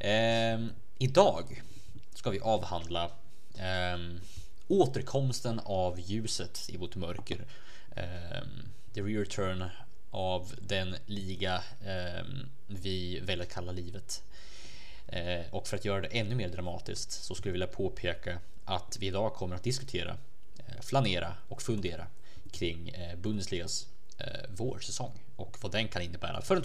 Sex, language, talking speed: male, Swedish, 135 wpm